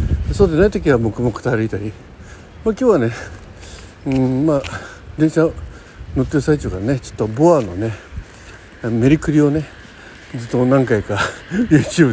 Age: 60-79